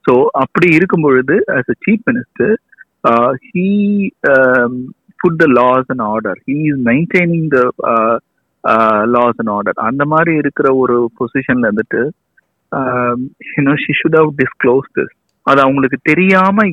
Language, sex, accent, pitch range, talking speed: Tamil, male, native, 130-180 Hz, 145 wpm